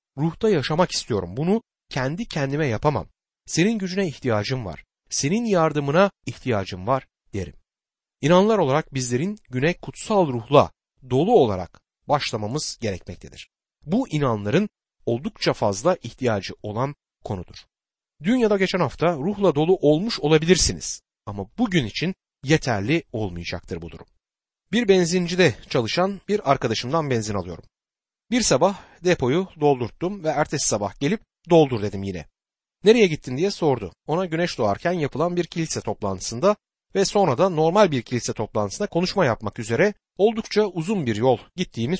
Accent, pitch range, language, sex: native, 110-185 Hz, Turkish, male